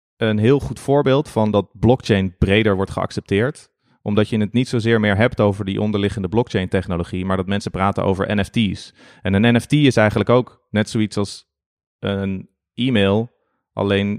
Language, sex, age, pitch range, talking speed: Dutch, male, 30-49, 95-115 Hz, 170 wpm